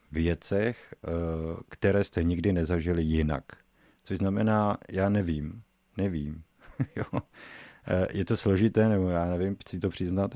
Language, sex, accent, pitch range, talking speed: Czech, male, native, 90-110 Hz, 120 wpm